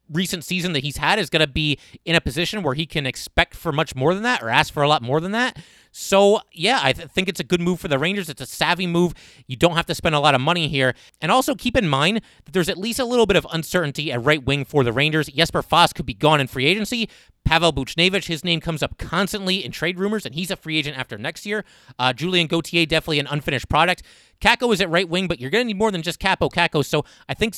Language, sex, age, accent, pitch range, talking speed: English, male, 30-49, American, 140-185 Hz, 270 wpm